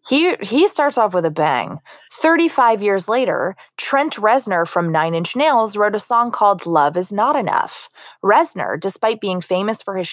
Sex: female